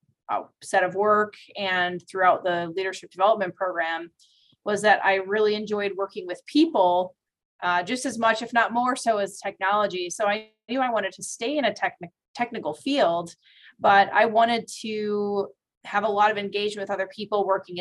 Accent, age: American, 30-49